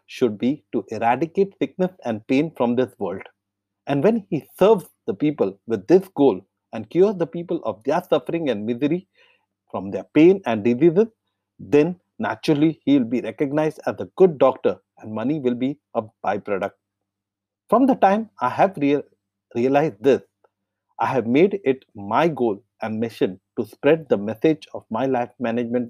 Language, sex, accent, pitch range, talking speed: English, male, Indian, 105-155 Hz, 165 wpm